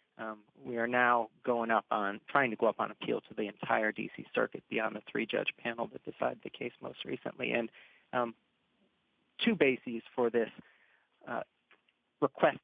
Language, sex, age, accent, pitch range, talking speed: English, male, 40-59, American, 115-140 Hz, 170 wpm